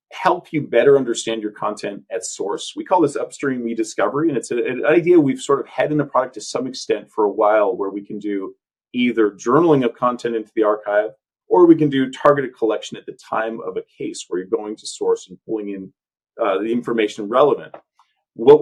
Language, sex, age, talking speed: English, male, 40-59, 215 wpm